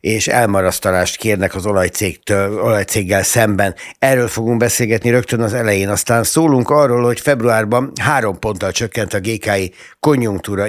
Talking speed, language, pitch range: 130 wpm, Hungarian, 100-125 Hz